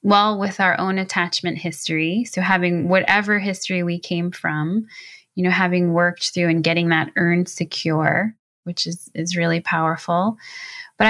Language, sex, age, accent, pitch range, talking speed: English, female, 20-39, American, 165-215 Hz, 155 wpm